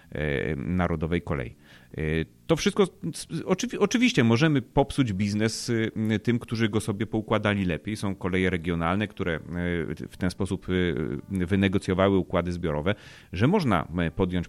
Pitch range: 85-105 Hz